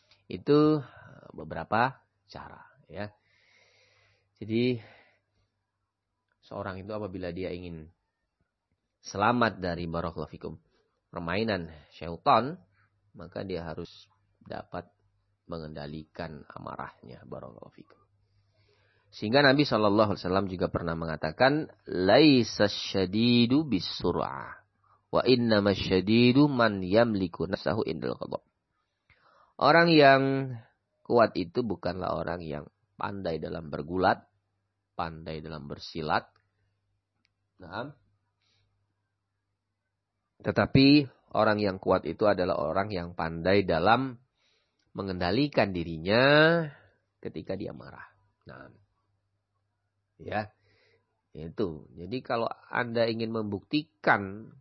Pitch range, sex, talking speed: 90-110 Hz, male, 85 wpm